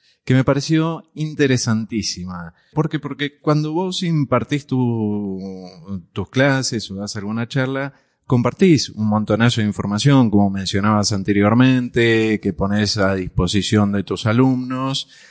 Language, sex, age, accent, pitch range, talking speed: Spanish, male, 30-49, Argentinian, 95-125 Hz, 120 wpm